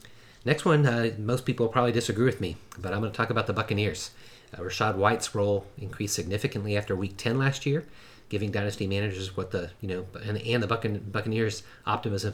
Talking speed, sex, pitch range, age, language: 195 wpm, male, 95-115 Hz, 30-49, English